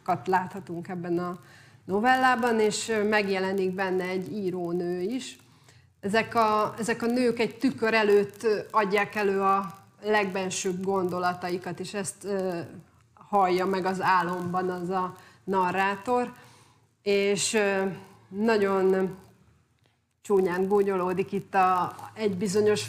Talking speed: 105 wpm